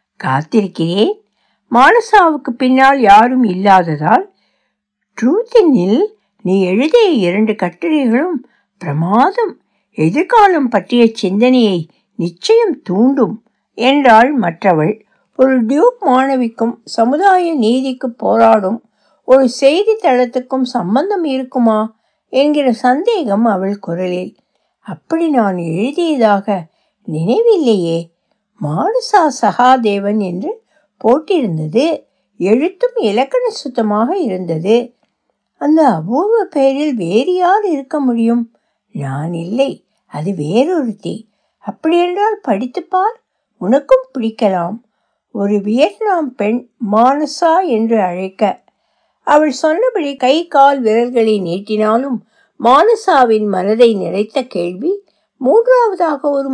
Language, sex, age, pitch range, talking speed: Tamil, female, 60-79, 210-300 Hz, 80 wpm